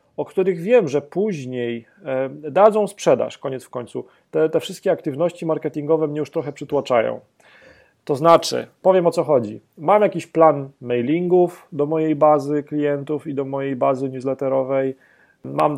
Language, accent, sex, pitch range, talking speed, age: Polish, native, male, 135-165 Hz, 150 wpm, 30-49